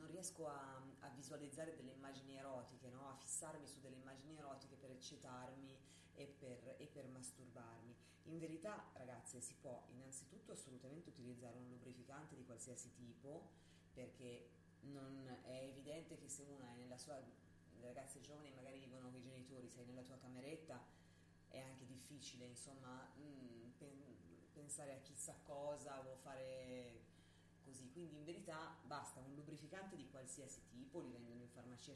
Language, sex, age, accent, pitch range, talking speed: Italian, female, 30-49, native, 125-145 Hz, 155 wpm